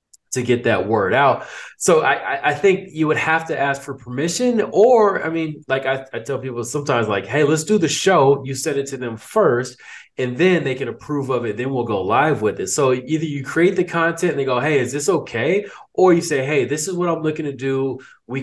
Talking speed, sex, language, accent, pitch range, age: 245 wpm, male, English, American, 120-165 Hz, 20-39